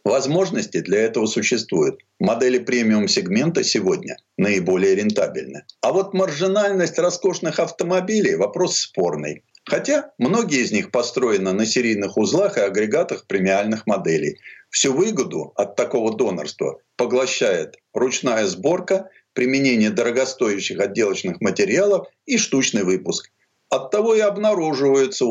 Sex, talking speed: male, 110 wpm